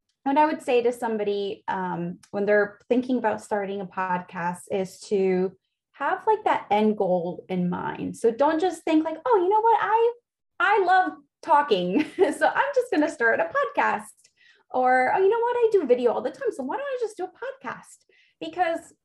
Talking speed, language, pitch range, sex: 200 wpm, English, 200-275 Hz, female